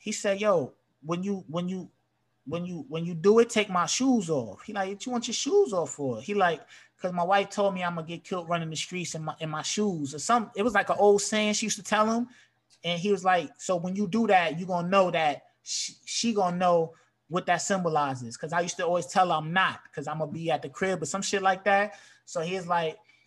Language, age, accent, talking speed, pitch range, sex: English, 20-39, American, 265 wpm, 165-205 Hz, male